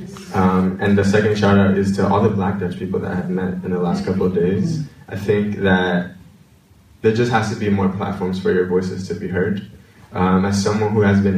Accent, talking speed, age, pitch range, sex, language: American, 230 wpm, 20-39, 95-110 Hz, male, Dutch